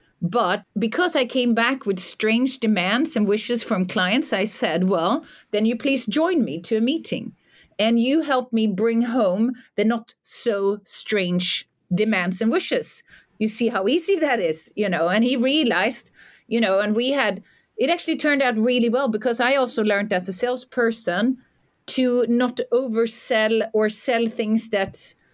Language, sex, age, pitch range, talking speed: English, female, 40-59, 195-245 Hz, 170 wpm